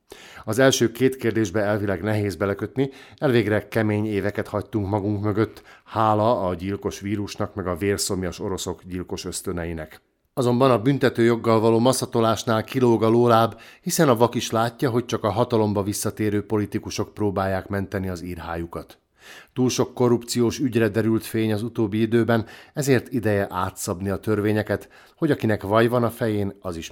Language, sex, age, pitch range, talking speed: Hungarian, male, 50-69, 100-120 Hz, 155 wpm